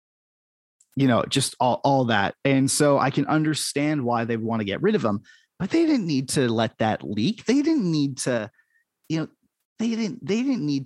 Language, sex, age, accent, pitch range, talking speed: English, male, 20-39, American, 130-185 Hz, 210 wpm